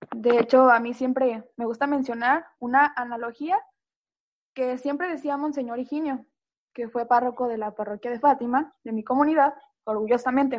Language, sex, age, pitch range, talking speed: Spanish, female, 10-29, 230-280 Hz, 155 wpm